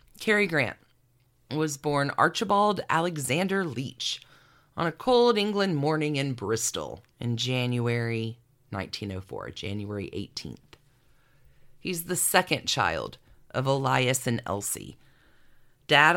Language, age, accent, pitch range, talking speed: English, 40-59, American, 120-160 Hz, 105 wpm